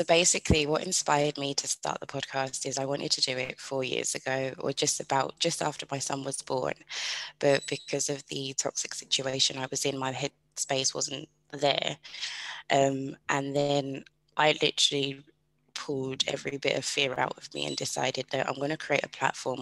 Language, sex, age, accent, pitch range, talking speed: English, female, 20-39, British, 135-150 Hz, 195 wpm